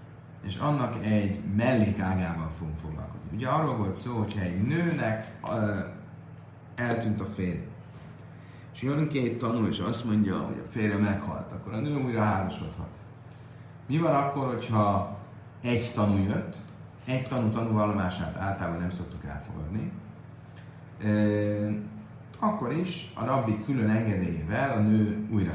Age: 30-49